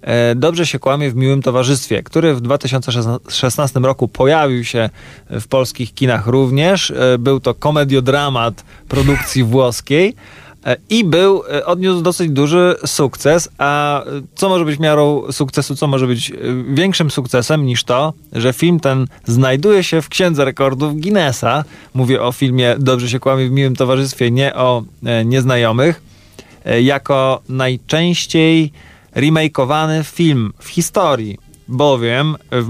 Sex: male